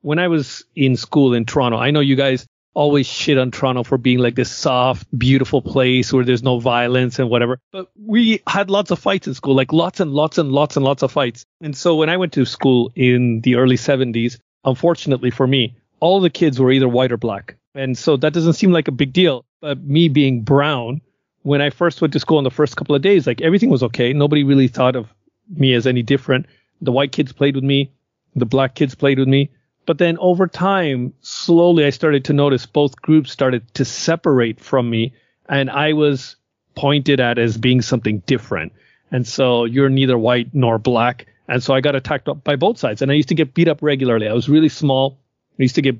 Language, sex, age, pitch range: English, male, 40-59, 125-155 Hz